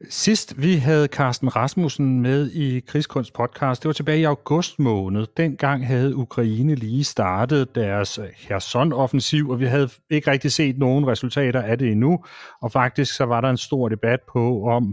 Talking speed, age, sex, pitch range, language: 175 wpm, 30-49, male, 110-140 Hz, Danish